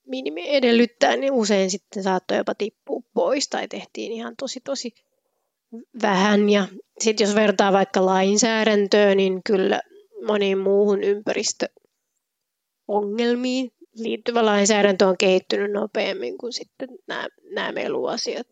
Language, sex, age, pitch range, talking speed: Finnish, female, 30-49, 205-240 Hz, 115 wpm